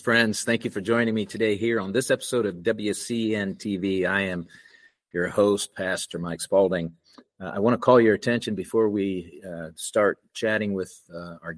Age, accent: 50-69, American